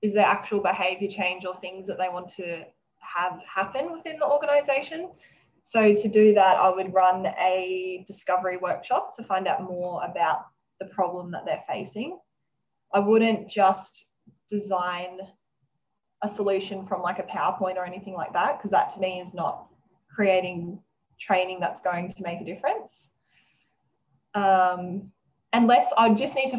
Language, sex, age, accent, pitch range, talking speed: English, female, 10-29, Australian, 180-205 Hz, 160 wpm